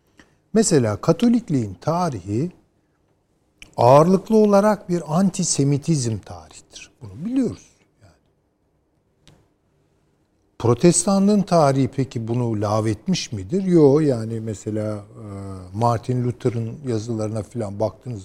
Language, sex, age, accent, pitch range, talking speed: Turkish, male, 50-69, native, 105-150 Hz, 80 wpm